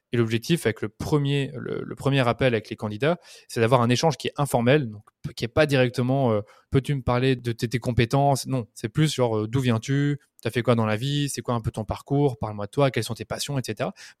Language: French